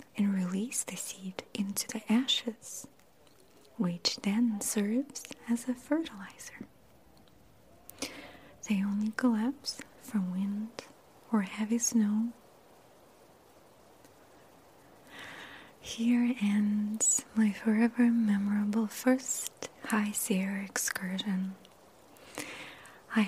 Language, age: English, 30-49